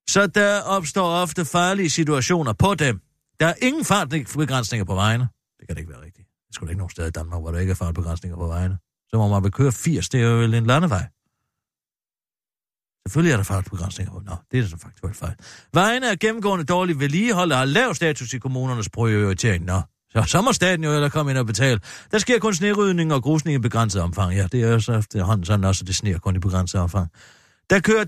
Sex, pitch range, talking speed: male, 110-180 Hz, 220 wpm